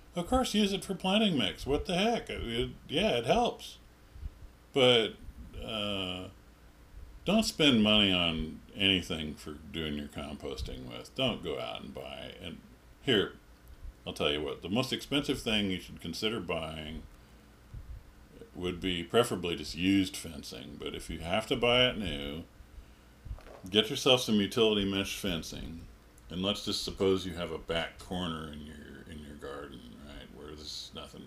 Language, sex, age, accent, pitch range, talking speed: English, male, 50-69, American, 75-100 Hz, 145 wpm